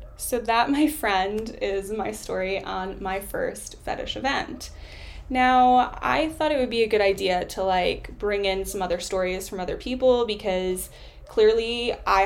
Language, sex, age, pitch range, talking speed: English, female, 10-29, 195-255 Hz, 165 wpm